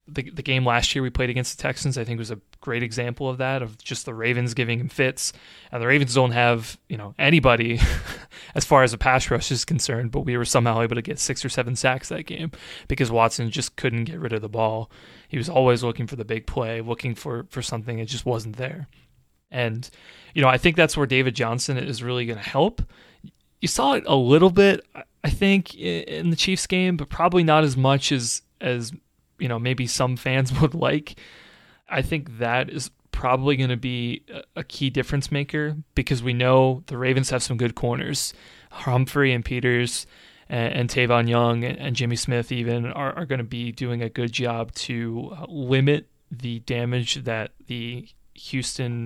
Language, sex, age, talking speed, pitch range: English, male, 20-39, 205 wpm, 120-140 Hz